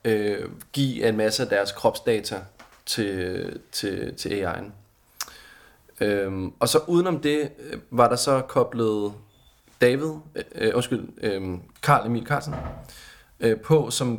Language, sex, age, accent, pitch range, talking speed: Danish, male, 20-39, native, 110-130 Hz, 125 wpm